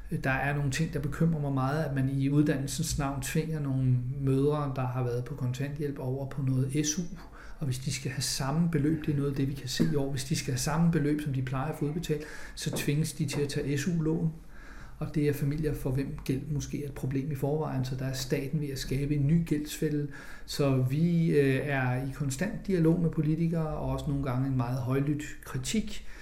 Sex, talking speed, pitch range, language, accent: male, 230 wpm, 135-170 Hz, Danish, native